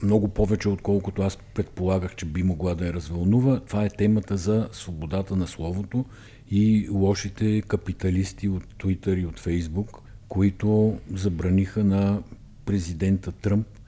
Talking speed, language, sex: 135 wpm, Bulgarian, male